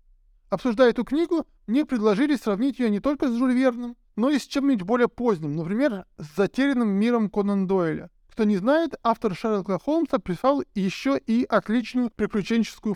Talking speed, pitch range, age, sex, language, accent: 155 wpm, 195-250 Hz, 20-39, male, Russian, native